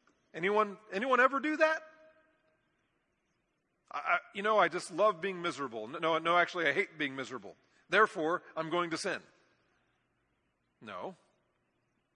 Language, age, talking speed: English, 40-59, 135 wpm